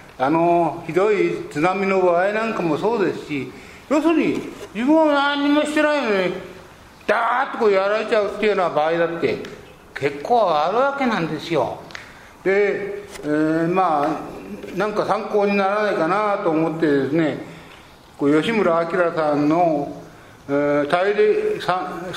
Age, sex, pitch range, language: 60-79, male, 155-215 Hz, Japanese